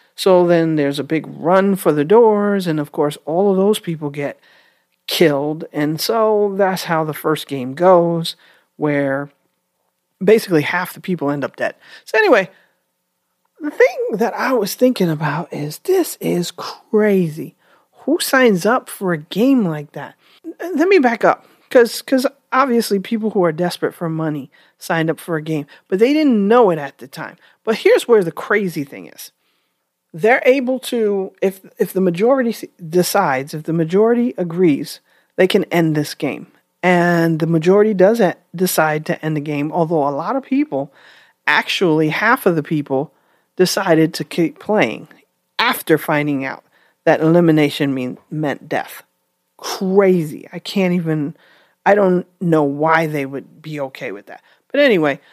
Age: 40-59